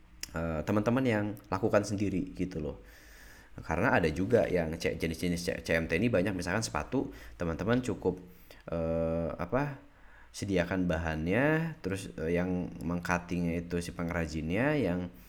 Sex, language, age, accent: male, Indonesian, 20-39, native